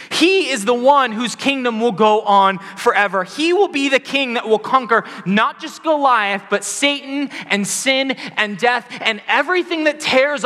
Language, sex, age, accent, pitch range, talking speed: English, male, 20-39, American, 160-225 Hz, 180 wpm